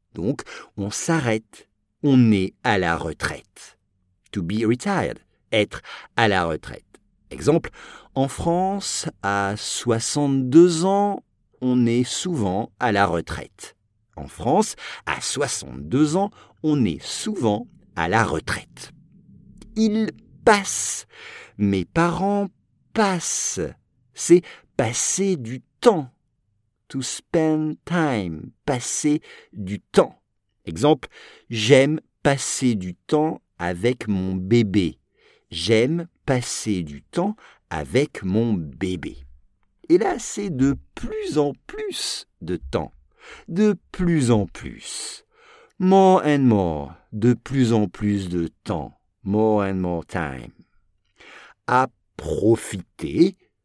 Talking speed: 105 wpm